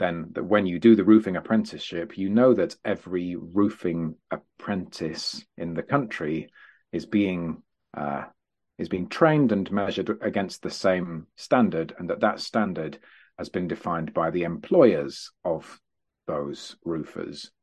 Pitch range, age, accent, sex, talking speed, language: 80-105 Hz, 40-59, British, male, 145 wpm, English